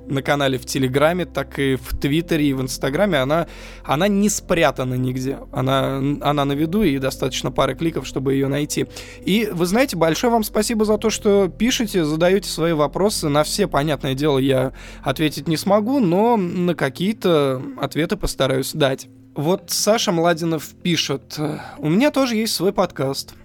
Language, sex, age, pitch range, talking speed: Russian, male, 20-39, 140-195 Hz, 165 wpm